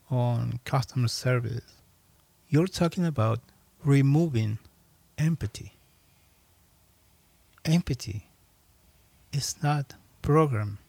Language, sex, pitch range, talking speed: English, male, 100-140 Hz, 65 wpm